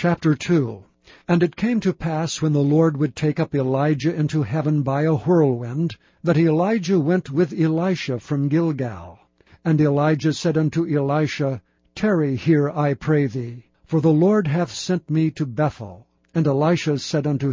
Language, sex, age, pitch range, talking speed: English, male, 60-79, 140-165 Hz, 165 wpm